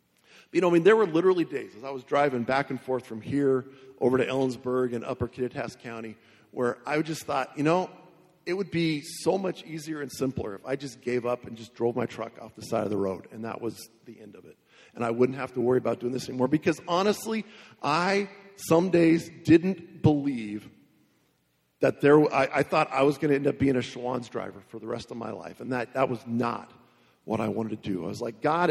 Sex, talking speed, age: male, 235 wpm, 50-69